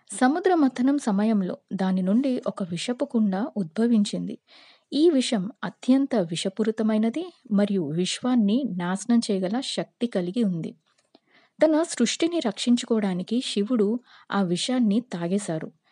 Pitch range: 190-250 Hz